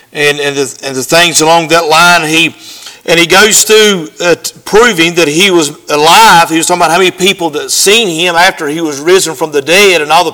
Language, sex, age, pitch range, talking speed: English, male, 50-69, 170-215 Hz, 230 wpm